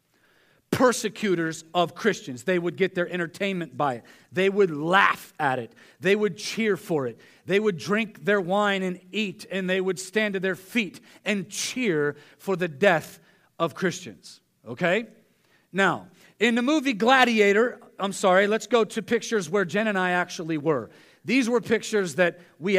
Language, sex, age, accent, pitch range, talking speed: English, male, 40-59, American, 175-230 Hz, 170 wpm